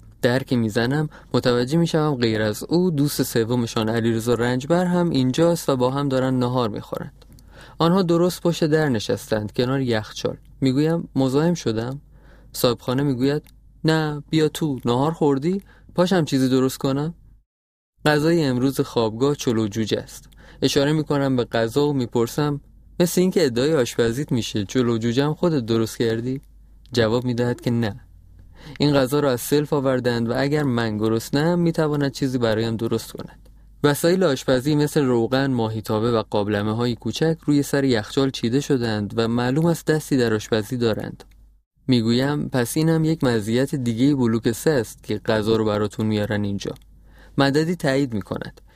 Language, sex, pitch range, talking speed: Persian, male, 115-150 Hz, 155 wpm